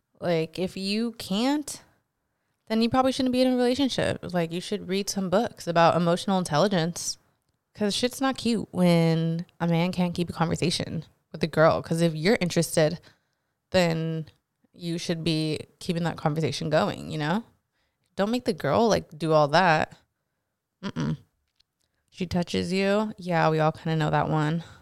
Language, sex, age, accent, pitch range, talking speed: English, female, 20-39, American, 160-195 Hz, 170 wpm